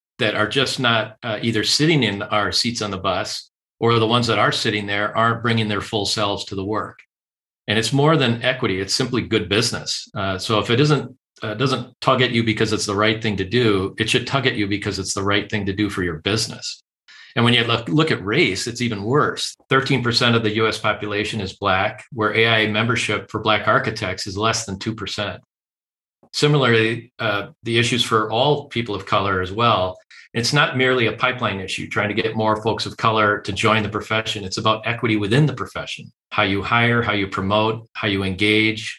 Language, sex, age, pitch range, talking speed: English, male, 40-59, 105-120 Hz, 210 wpm